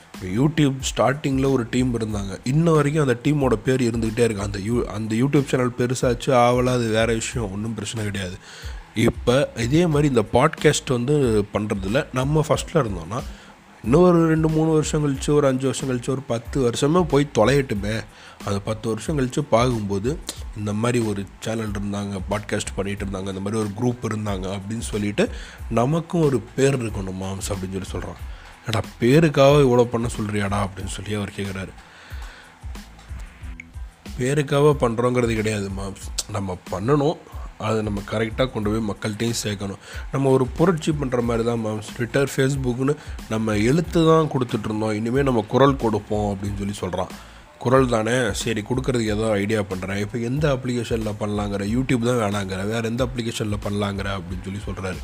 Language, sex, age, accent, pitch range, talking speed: Tamil, male, 30-49, native, 100-130 Hz, 155 wpm